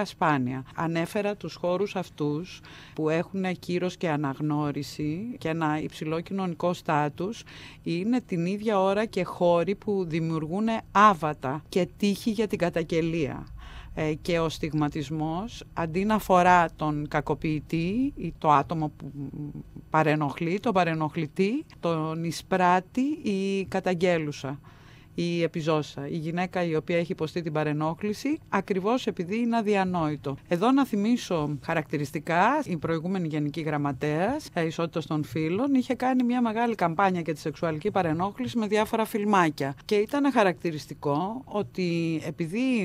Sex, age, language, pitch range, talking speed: female, 30-49, Greek, 155-200 Hz, 125 wpm